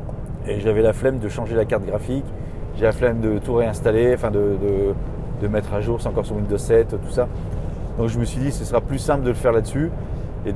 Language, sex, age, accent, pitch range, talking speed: French, male, 30-49, French, 105-135 Hz, 245 wpm